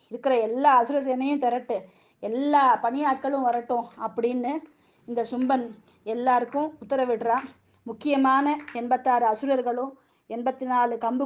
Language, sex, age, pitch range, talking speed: Tamil, female, 20-39, 235-270 Hz, 90 wpm